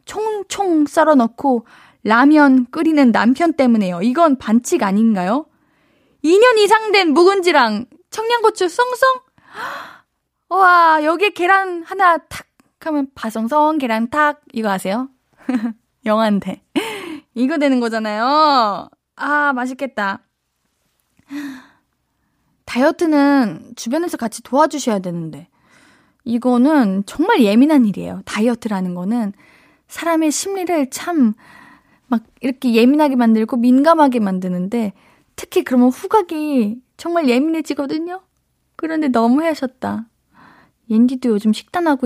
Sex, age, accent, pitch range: female, 20-39, native, 225-310 Hz